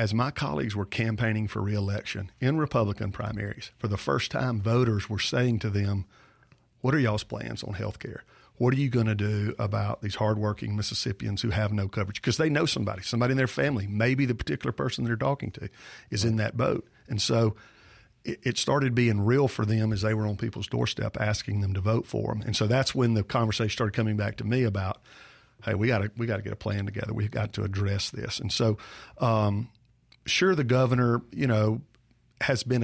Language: English